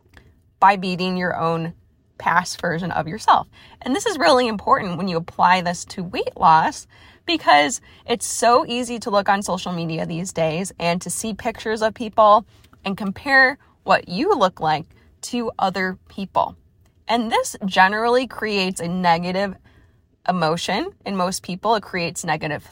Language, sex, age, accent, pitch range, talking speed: English, female, 20-39, American, 175-235 Hz, 155 wpm